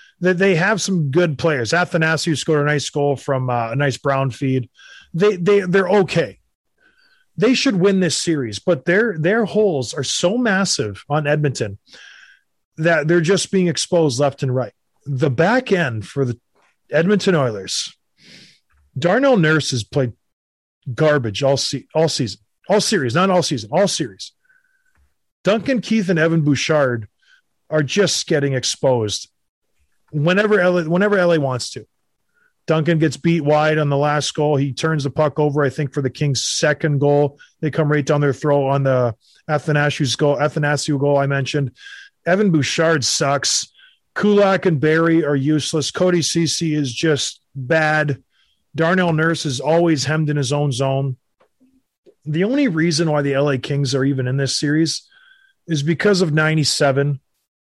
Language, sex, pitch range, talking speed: English, male, 140-180 Hz, 155 wpm